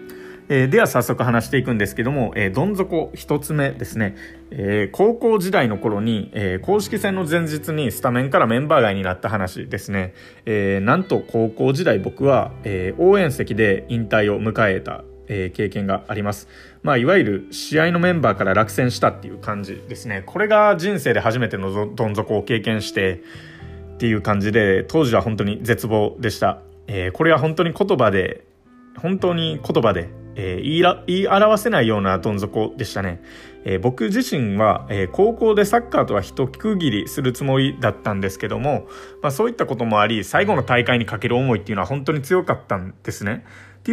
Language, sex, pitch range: Japanese, male, 100-150 Hz